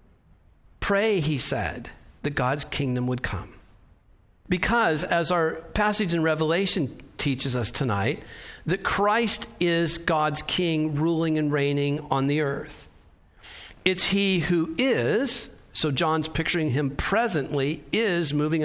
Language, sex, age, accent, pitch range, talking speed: English, male, 60-79, American, 140-195 Hz, 125 wpm